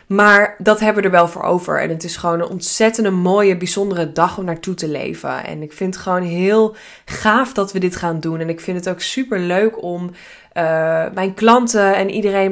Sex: female